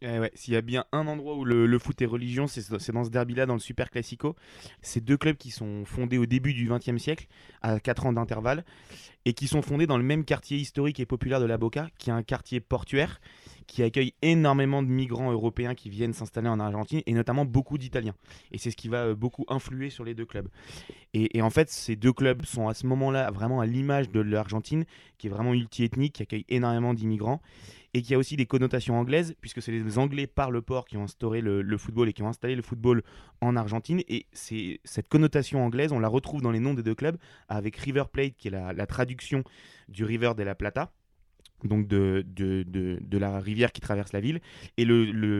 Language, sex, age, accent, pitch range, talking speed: French, male, 20-39, French, 110-130 Hz, 235 wpm